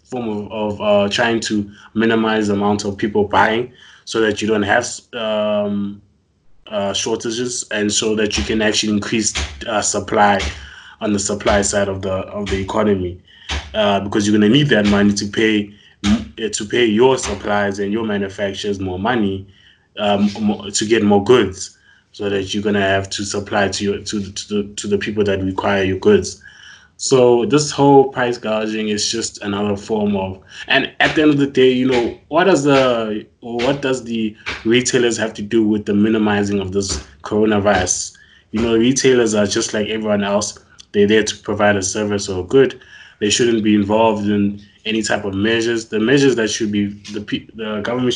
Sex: male